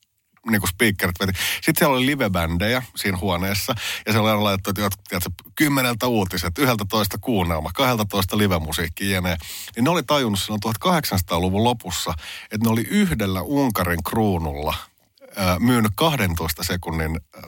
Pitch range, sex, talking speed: 90-115 Hz, male, 145 wpm